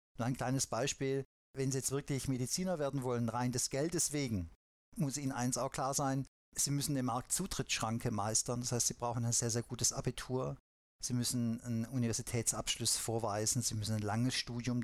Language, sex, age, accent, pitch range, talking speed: German, male, 50-69, German, 115-140 Hz, 180 wpm